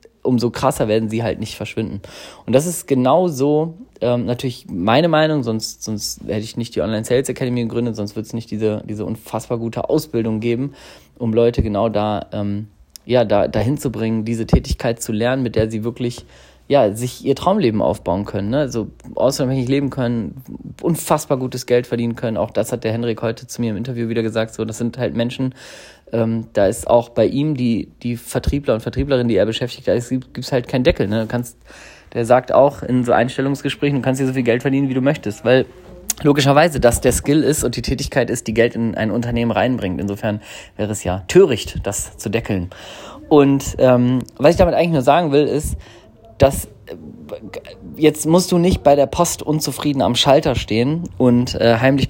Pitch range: 110-140 Hz